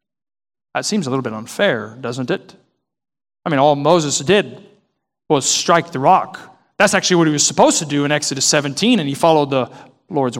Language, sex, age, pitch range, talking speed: English, male, 40-59, 130-180 Hz, 190 wpm